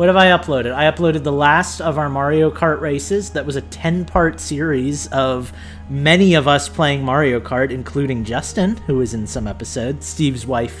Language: English